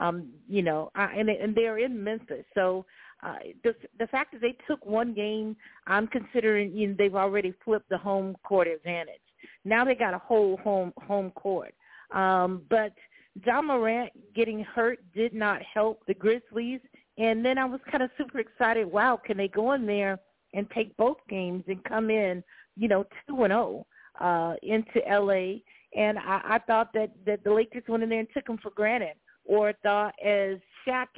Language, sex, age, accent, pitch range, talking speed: English, female, 40-59, American, 195-230 Hz, 185 wpm